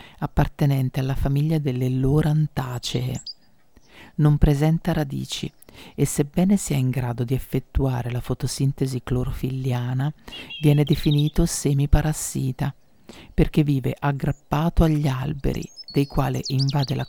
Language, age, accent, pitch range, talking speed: Italian, 50-69, native, 130-150 Hz, 105 wpm